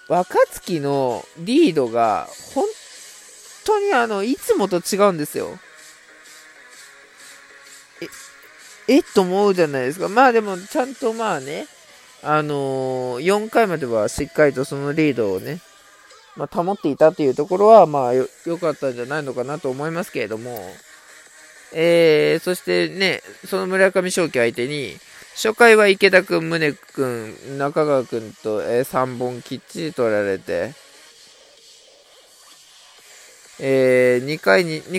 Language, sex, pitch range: Japanese, male, 130-195 Hz